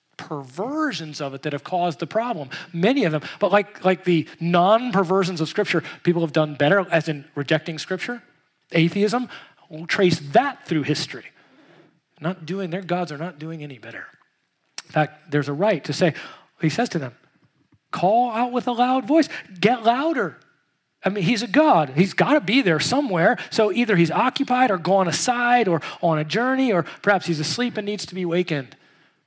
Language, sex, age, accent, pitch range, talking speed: English, male, 30-49, American, 160-240 Hz, 185 wpm